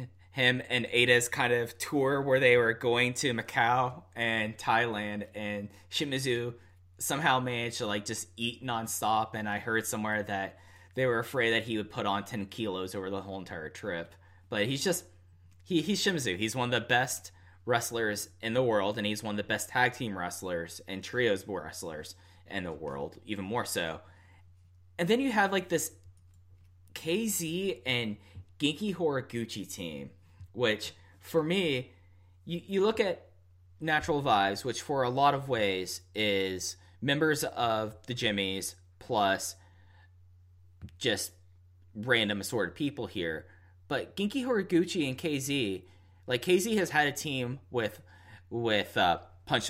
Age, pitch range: 10-29, 95-125 Hz